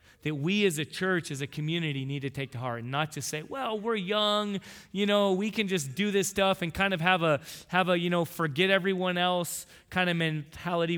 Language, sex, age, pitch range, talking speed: English, male, 30-49, 150-185 Hz, 235 wpm